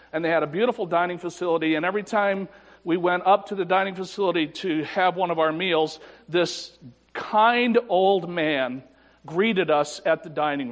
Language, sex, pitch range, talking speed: English, male, 145-190 Hz, 180 wpm